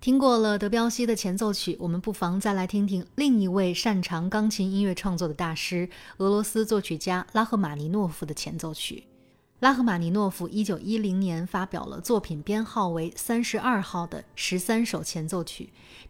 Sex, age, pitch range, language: female, 30-49, 175-215 Hz, Chinese